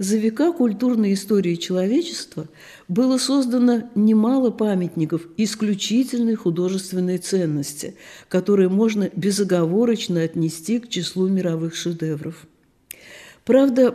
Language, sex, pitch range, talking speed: Russian, female, 180-240 Hz, 90 wpm